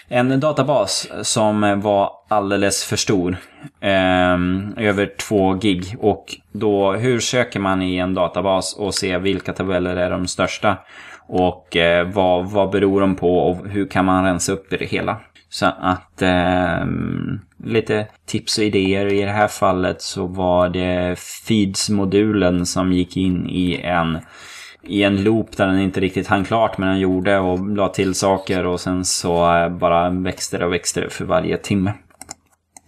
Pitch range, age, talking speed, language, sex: 90-105 Hz, 20-39, 160 wpm, Swedish, male